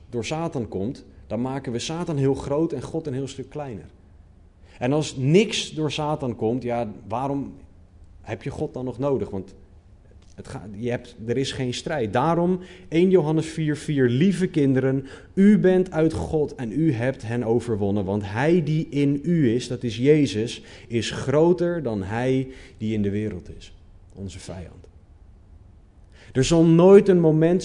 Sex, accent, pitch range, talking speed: male, Dutch, 95-155 Hz, 170 wpm